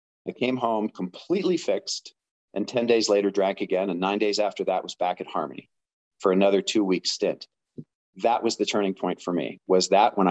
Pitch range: 95-115 Hz